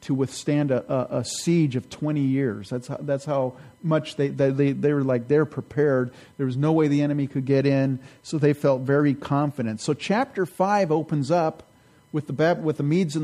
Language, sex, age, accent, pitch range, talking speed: English, male, 40-59, American, 130-160 Hz, 195 wpm